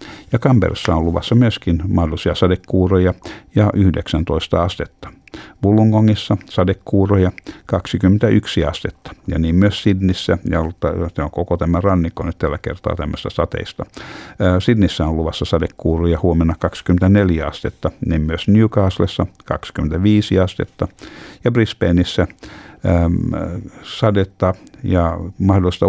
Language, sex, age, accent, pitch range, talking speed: Finnish, male, 60-79, native, 85-100 Hz, 105 wpm